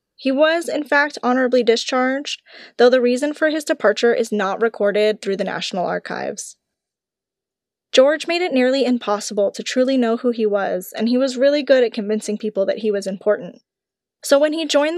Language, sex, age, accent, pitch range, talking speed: English, female, 10-29, American, 210-270 Hz, 185 wpm